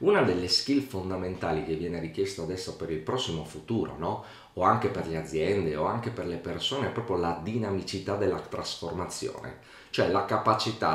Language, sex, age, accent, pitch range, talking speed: Italian, male, 30-49, native, 80-100 Hz, 175 wpm